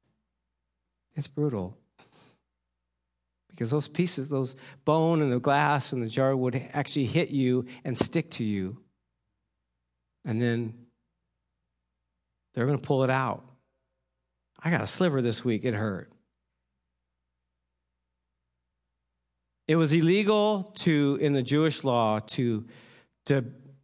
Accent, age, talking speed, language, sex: American, 50-69, 120 wpm, English, male